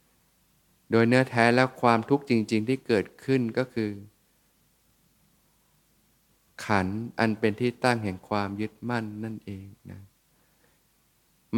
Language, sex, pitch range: Thai, male, 100-120 Hz